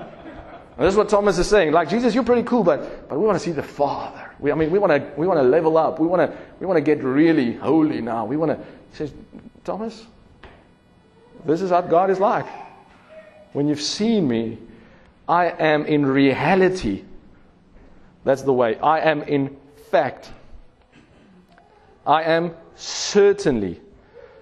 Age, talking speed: 40-59, 170 wpm